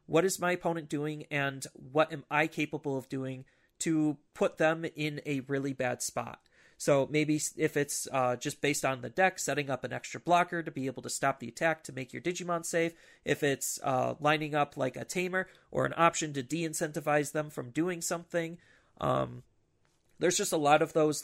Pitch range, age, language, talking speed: 135-165 Hz, 30-49, English, 200 wpm